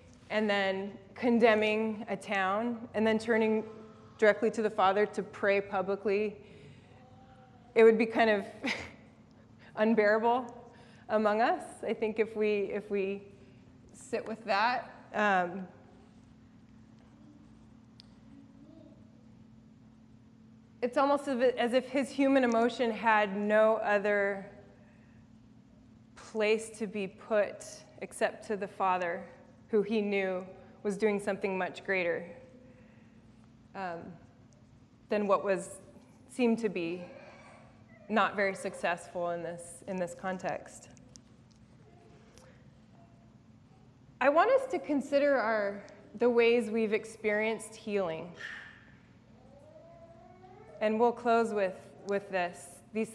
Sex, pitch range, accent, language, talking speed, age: female, 175-220 Hz, American, English, 105 wpm, 20-39